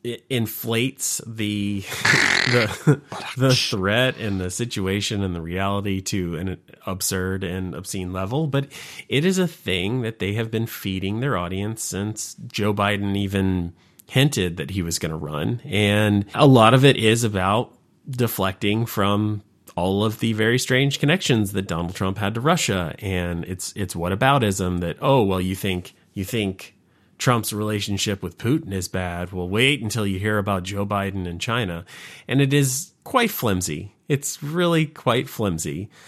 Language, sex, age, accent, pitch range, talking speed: English, male, 30-49, American, 95-125 Hz, 160 wpm